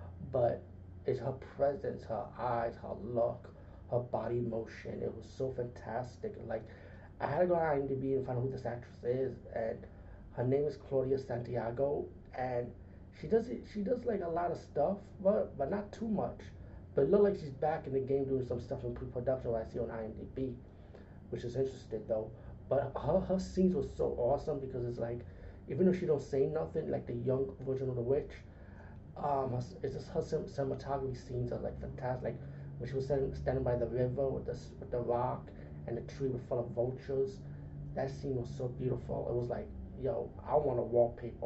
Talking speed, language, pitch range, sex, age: 200 wpm, English, 100-135 Hz, male, 30-49